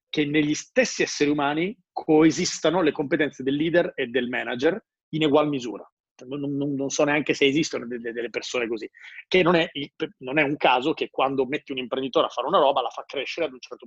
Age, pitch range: 30-49, 130-165 Hz